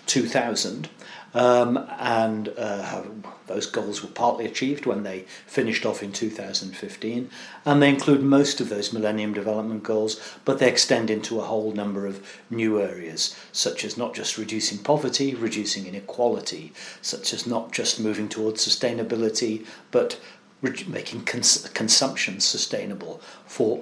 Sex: male